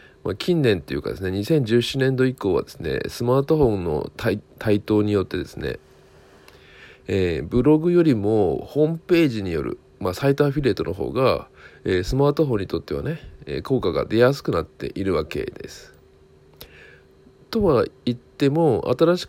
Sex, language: male, Japanese